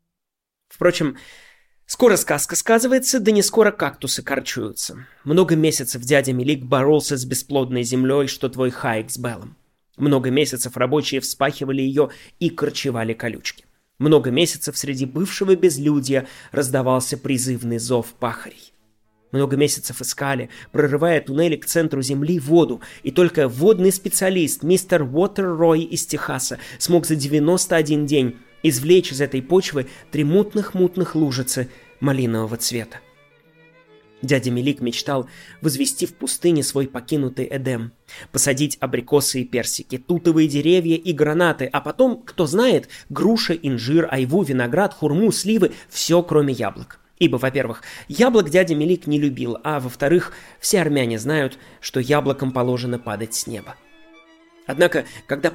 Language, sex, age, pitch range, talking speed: Russian, male, 20-39, 130-170 Hz, 130 wpm